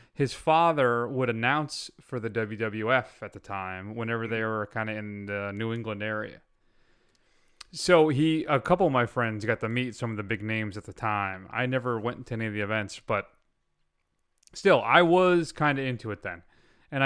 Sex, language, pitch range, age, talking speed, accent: male, English, 115-160 Hz, 30-49, 195 wpm, American